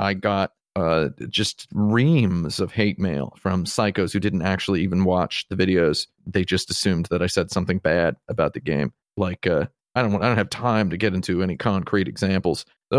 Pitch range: 100-130 Hz